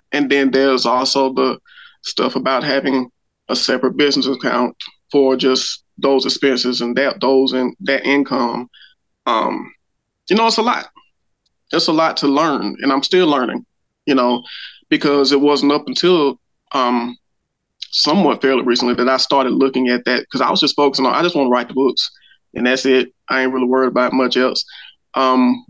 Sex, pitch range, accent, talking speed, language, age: male, 130-150 Hz, American, 180 wpm, English, 20-39